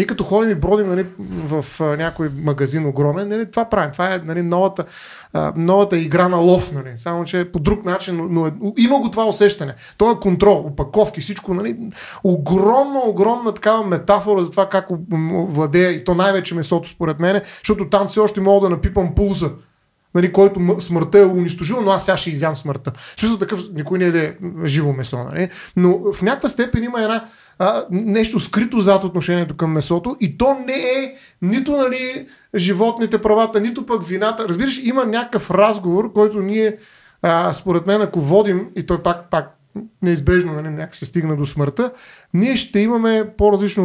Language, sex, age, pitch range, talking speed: Bulgarian, male, 30-49, 165-215 Hz, 180 wpm